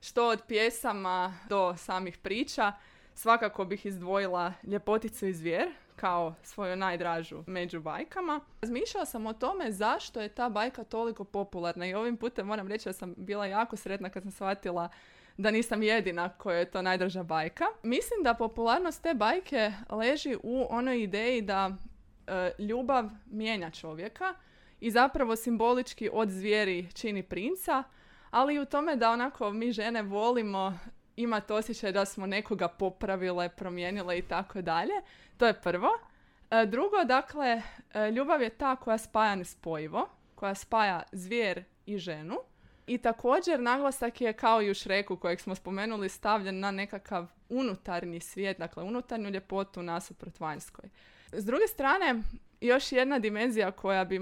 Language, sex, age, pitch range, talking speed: Croatian, female, 20-39, 185-235 Hz, 145 wpm